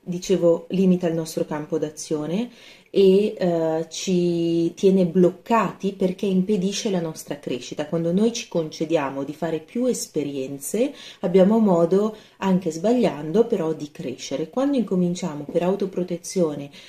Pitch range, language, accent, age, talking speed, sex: 160-195 Hz, Italian, native, 30-49, 125 wpm, female